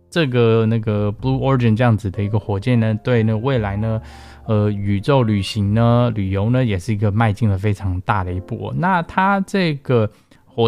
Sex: male